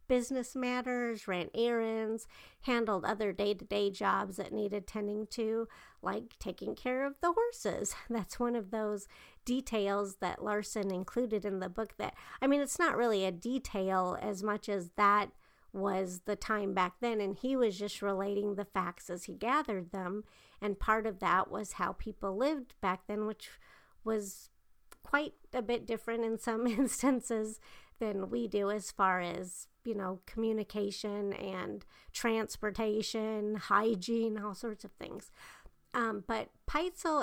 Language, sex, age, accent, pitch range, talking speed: English, female, 50-69, American, 200-240 Hz, 155 wpm